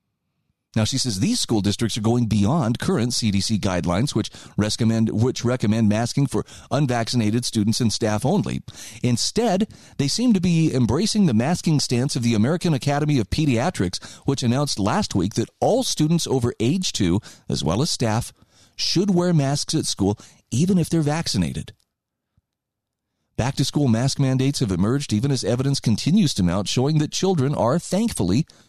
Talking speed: 165 wpm